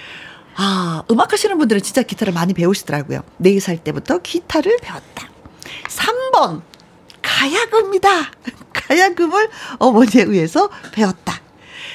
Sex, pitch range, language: female, 185-280 Hz, Korean